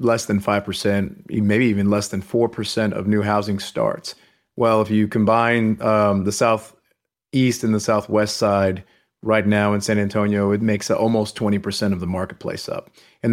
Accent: American